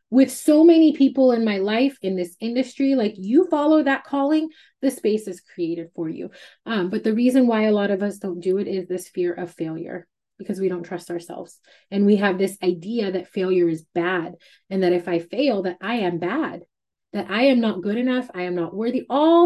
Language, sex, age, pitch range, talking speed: English, female, 20-39, 185-260 Hz, 220 wpm